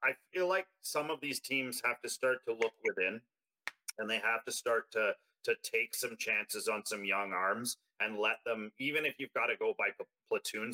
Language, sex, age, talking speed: English, male, 30-49, 210 wpm